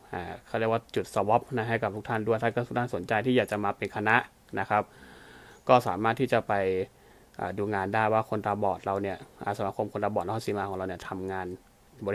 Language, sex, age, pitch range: Thai, male, 20-39, 105-120 Hz